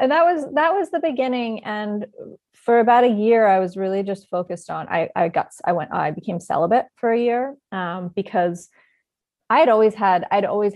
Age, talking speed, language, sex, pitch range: 30-49, 205 wpm, English, female, 185-230 Hz